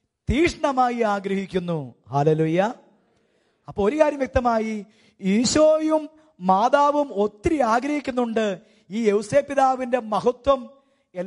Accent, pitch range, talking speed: Indian, 185-235 Hz, 95 wpm